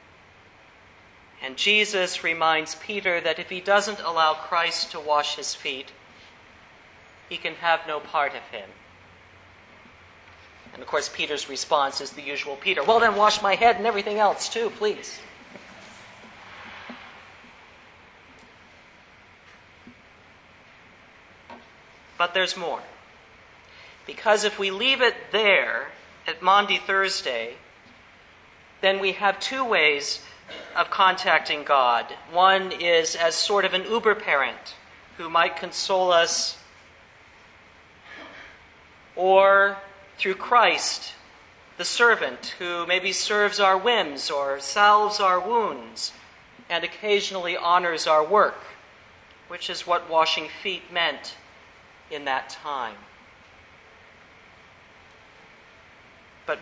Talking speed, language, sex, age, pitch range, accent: 105 wpm, English, male, 40-59, 155-200 Hz, American